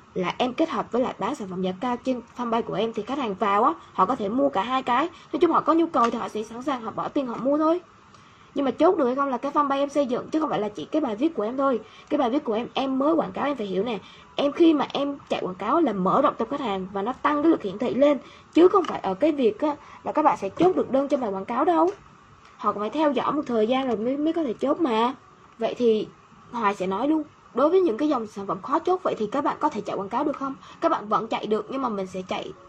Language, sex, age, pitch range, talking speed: Vietnamese, female, 20-39, 195-285 Hz, 315 wpm